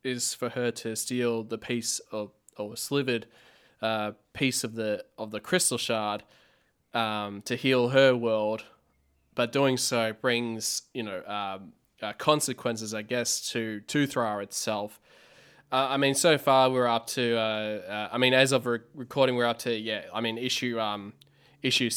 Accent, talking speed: Australian, 170 wpm